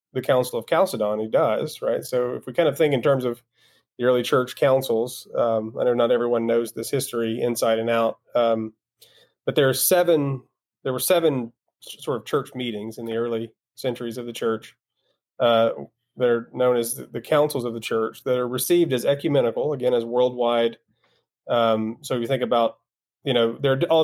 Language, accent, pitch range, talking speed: English, American, 115-130 Hz, 200 wpm